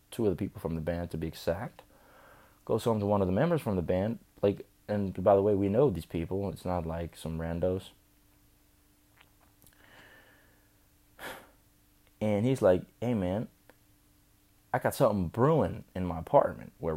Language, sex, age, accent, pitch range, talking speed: English, male, 20-39, American, 90-105 Hz, 165 wpm